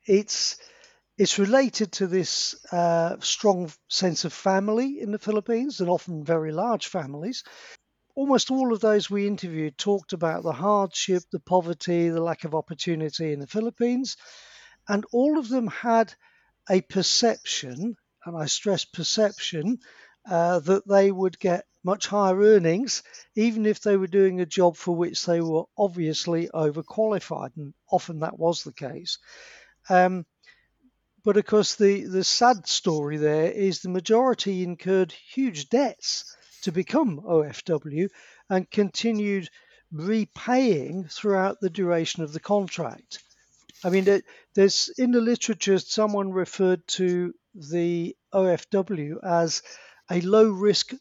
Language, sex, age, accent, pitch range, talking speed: English, male, 50-69, British, 170-215 Hz, 135 wpm